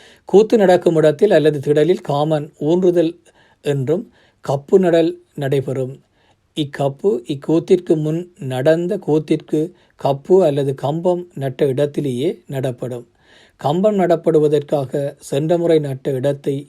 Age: 50-69